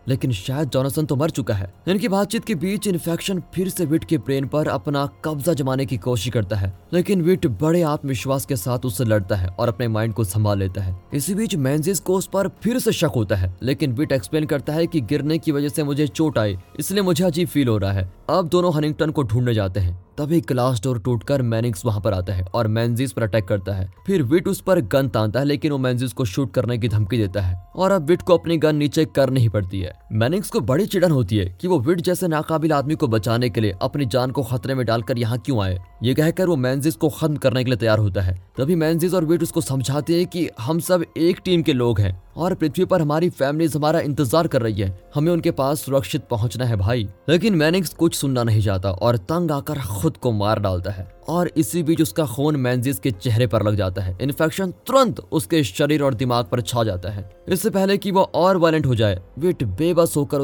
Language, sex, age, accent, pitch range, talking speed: Hindi, male, 20-39, native, 115-165 Hz, 235 wpm